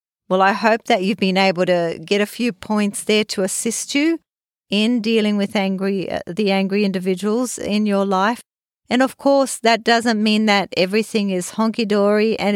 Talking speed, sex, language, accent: 175 wpm, female, English, Australian